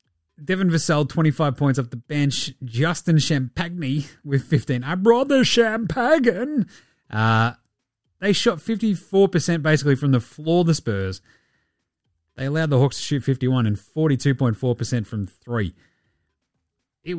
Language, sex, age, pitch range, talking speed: English, male, 30-49, 125-165 Hz, 135 wpm